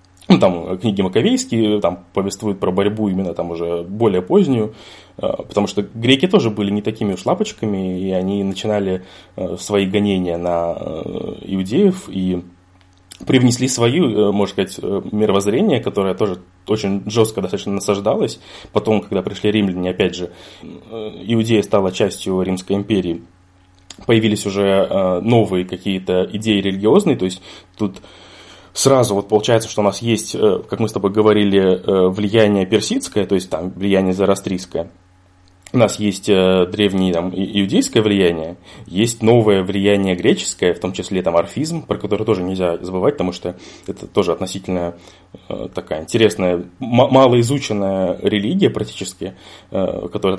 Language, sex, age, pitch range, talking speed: Russian, male, 20-39, 95-110 Hz, 130 wpm